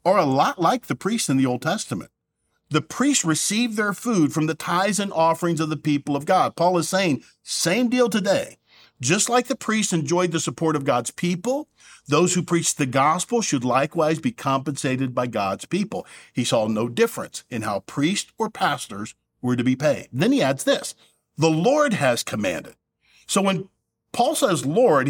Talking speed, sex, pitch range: 190 wpm, male, 135-185 Hz